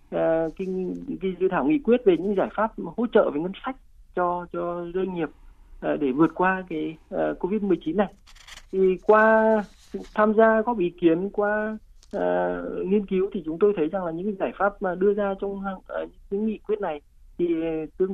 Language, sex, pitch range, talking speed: Vietnamese, male, 170-210 Hz, 175 wpm